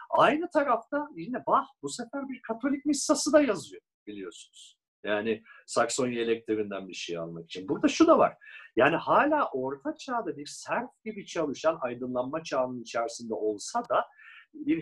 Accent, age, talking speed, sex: native, 50-69, 150 wpm, male